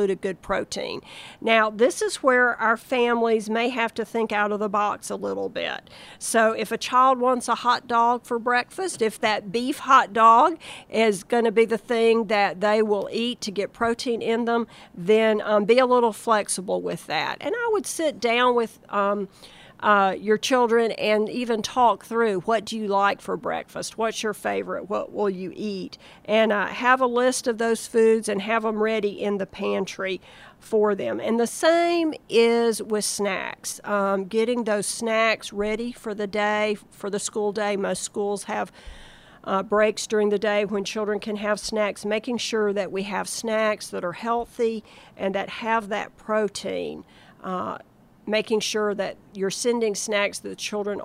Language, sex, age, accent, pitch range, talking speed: English, female, 50-69, American, 205-230 Hz, 185 wpm